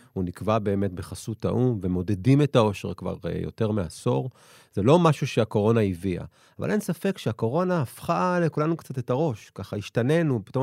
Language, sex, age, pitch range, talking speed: Hebrew, male, 30-49, 100-145 Hz, 165 wpm